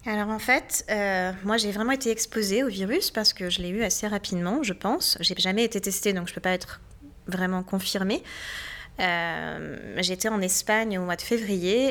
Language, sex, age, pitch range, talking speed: French, female, 20-39, 180-210 Hz, 205 wpm